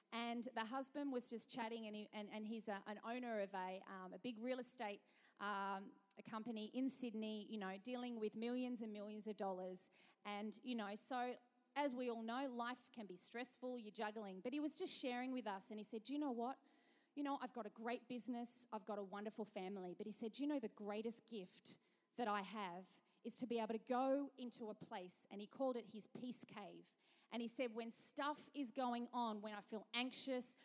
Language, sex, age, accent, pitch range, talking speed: English, female, 30-49, Australian, 220-265 Hz, 215 wpm